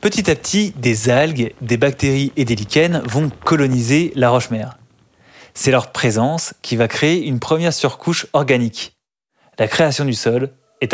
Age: 20-39